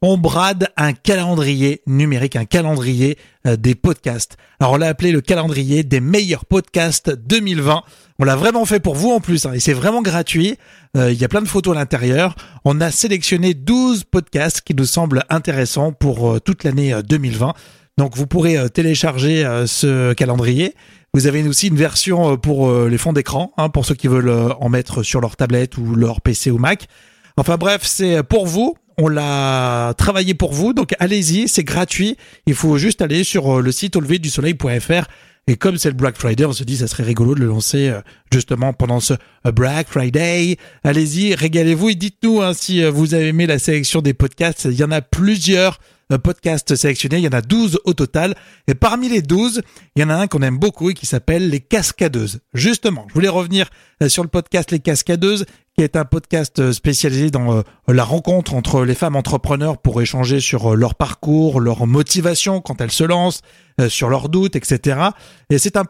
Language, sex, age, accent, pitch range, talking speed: French, male, 30-49, French, 130-180 Hz, 200 wpm